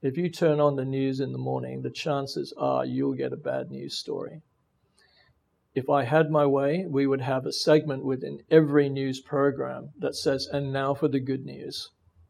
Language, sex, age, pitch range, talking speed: English, male, 50-69, 135-150 Hz, 195 wpm